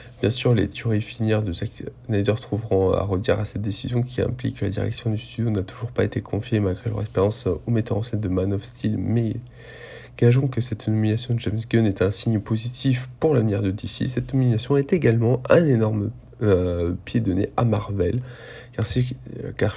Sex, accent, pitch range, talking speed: male, French, 100-125 Hz, 205 wpm